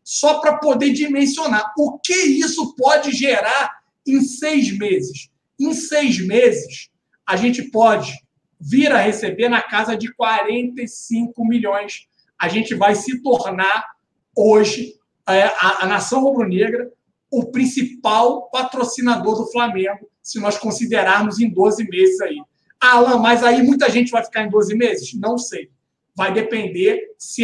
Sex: male